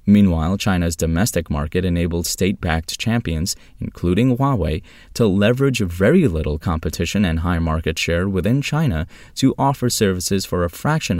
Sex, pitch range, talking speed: male, 85-110 Hz, 140 wpm